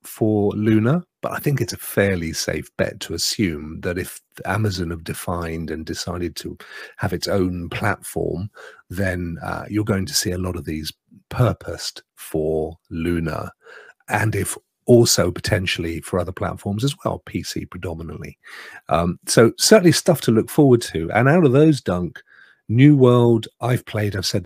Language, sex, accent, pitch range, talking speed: English, male, British, 85-120 Hz, 165 wpm